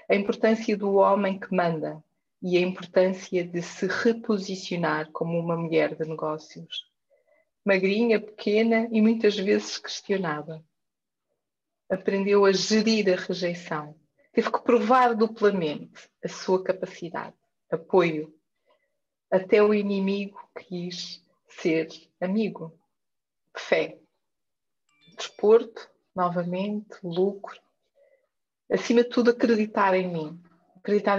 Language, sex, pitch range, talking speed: Portuguese, female, 180-225 Hz, 100 wpm